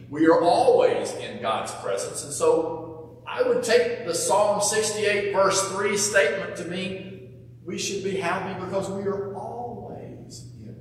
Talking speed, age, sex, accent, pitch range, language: 155 wpm, 50-69, male, American, 120-150 Hz, English